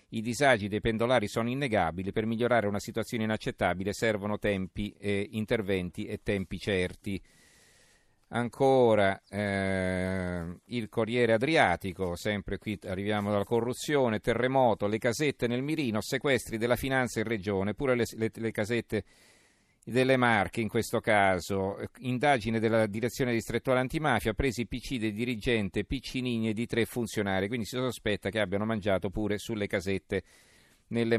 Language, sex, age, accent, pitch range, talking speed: Italian, male, 40-59, native, 100-120 Hz, 140 wpm